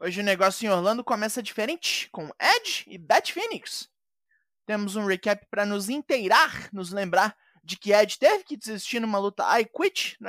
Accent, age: Brazilian, 20-39